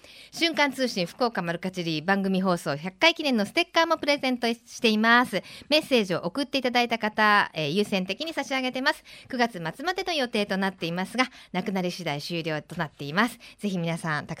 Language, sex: Japanese, female